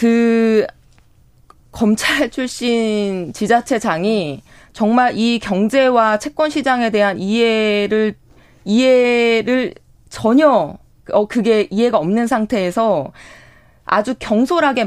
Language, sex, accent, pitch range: Korean, female, native, 190-245 Hz